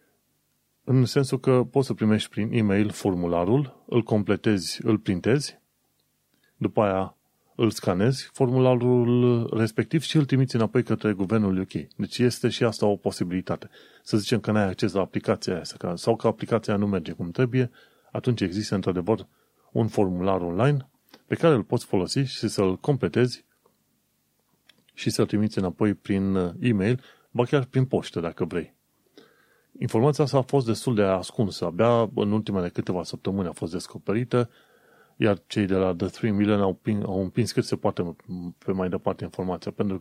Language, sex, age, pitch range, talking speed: Romanian, male, 30-49, 95-125 Hz, 160 wpm